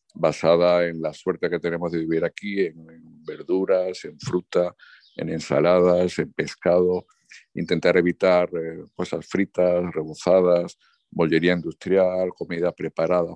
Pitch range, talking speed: 85-95 Hz, 125 wpm